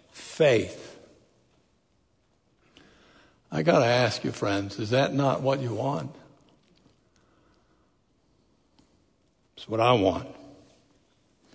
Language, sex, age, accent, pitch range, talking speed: English, male, 60-79, American, 130-185 Hz, 90 wpm